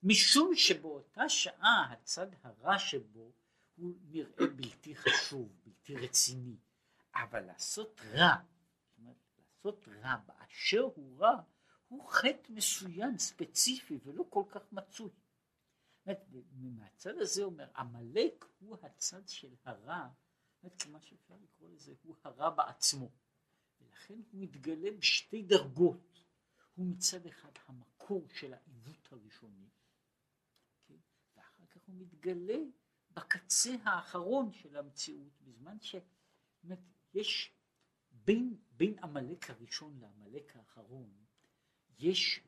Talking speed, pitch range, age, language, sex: 105 wpm, 125-195 Hz, 60-79, Hebrew, male